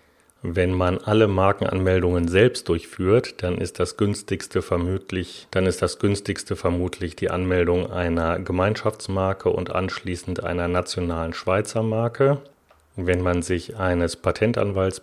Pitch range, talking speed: 90-100 Hz, 125 wpm